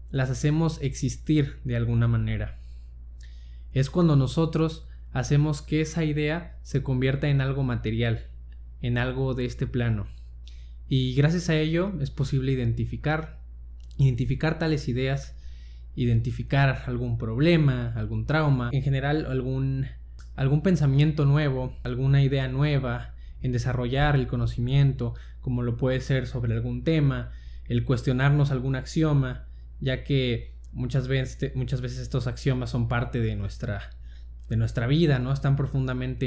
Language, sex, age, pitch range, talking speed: Spanish, male, 20-39, 115-140 Hz, 130 wpm